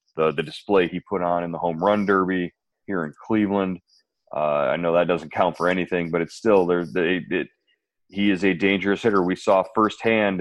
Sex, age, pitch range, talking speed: male, 30-49, 85-95 Hz, 200 wpm